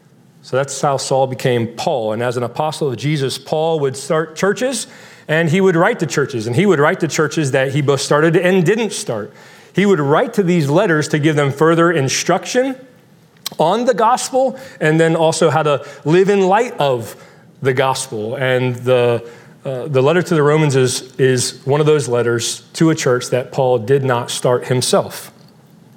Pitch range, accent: 130-170 Hz, American